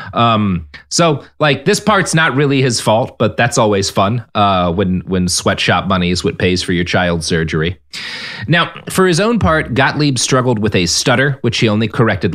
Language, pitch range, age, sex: English, 100-135 Hz, 30-49, male